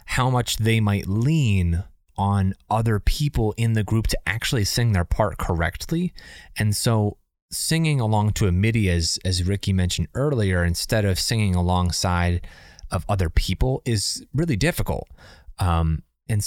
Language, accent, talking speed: English, American, 150 wpm